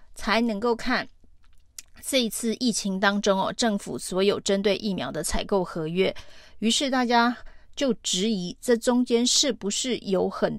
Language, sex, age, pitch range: Chinese, female, 30-49, 195-230 Hz